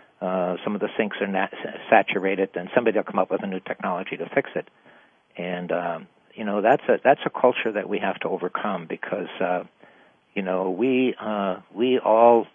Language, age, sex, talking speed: English, 60-79, male, 200 wpm